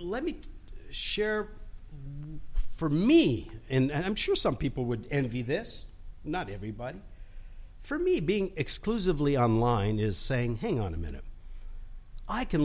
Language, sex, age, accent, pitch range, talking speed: English, male, 50-69, American, 110-165 Hz, 140 wpm